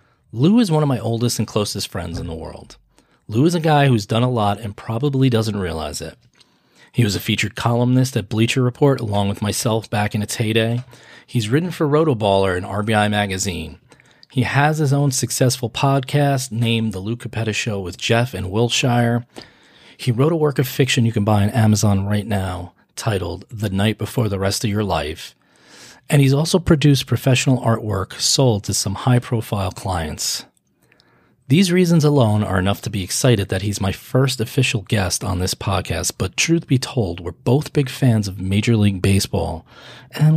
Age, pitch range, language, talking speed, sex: 30-49, 100-130 Hz, English, 185 wpm, male